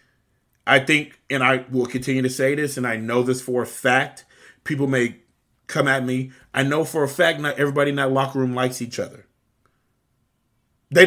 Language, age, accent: English, 30-49, American